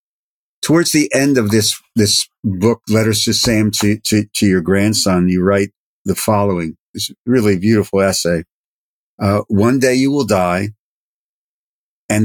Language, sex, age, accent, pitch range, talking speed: English, male, 50-69, American, 100-125 Hz, 150 wpm